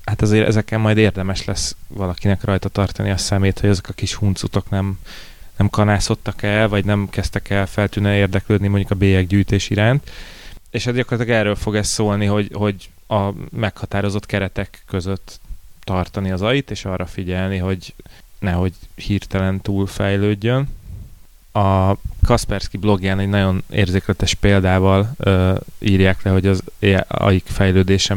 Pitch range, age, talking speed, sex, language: 95-105 Hz, 20-39, 145 wpm, male, Hungarian